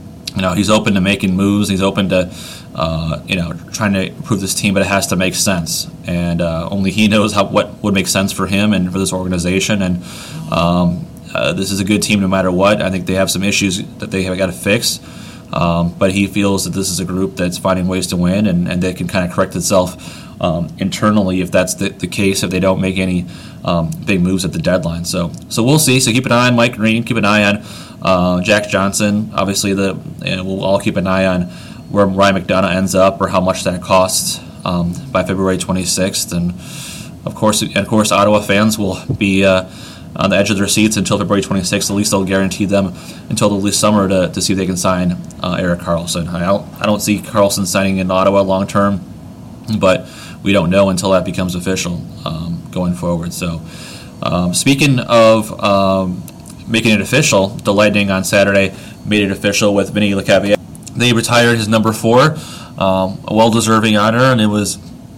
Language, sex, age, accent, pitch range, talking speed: English, male, 30-49, American, 95-105 Hz, 215 wpm